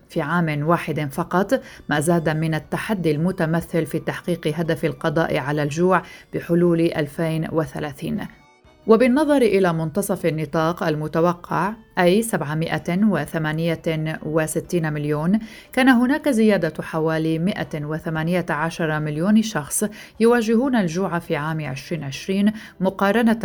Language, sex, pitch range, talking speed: Arabic, female, 160-190 Hz, 95 wpm